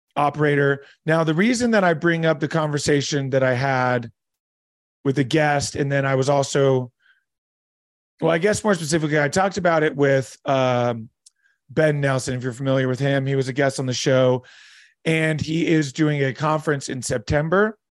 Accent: American